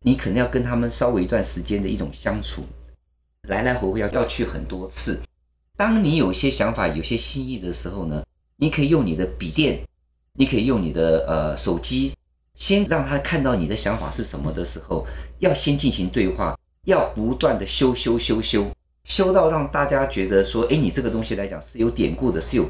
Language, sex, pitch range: Chinese, male, 80-135 Hz